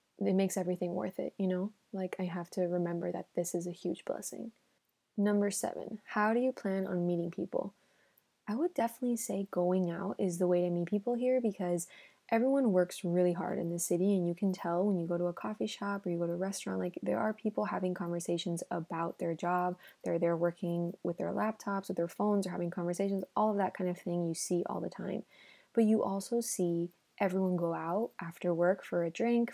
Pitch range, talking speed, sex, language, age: 175-195 Hz, 220 wpm, female, English, 20-39